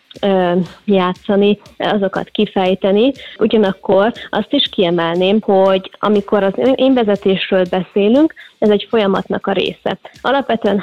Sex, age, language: female, 20-39, Hungarian